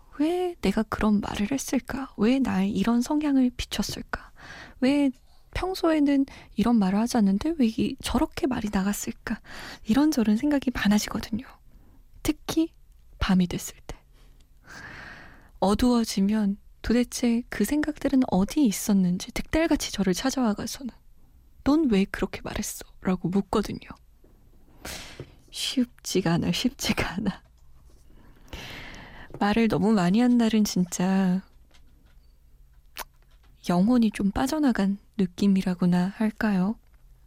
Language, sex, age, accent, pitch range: Korean, female, 20-39, native, 190-245 Hz